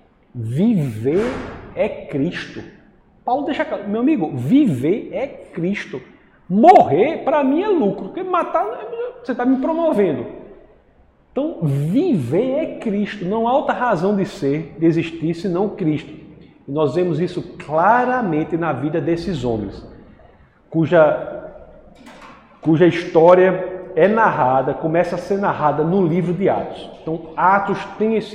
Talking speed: 135 wpm